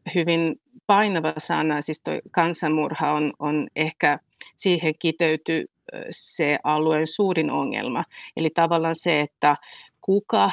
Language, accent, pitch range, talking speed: Finnish, native, 150-175 Hz, 110 wpm